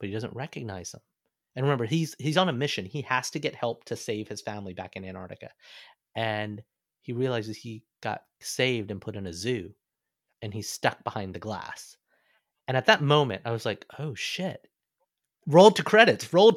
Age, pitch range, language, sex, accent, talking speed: 30-49, 110-155 Hz, English, male, American, 195 wpm